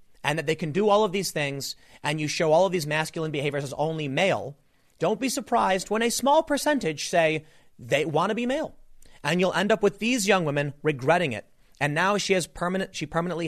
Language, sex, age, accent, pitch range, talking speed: English, male, 30-49, American, 145-195 Hz, 225 wpm